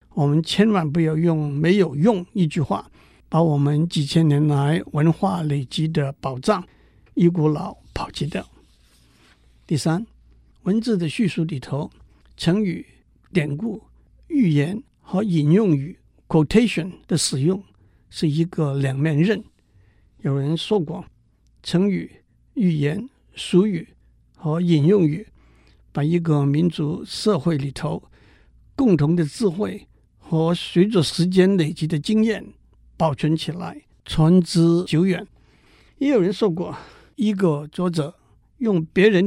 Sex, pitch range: male, 155-200 Hz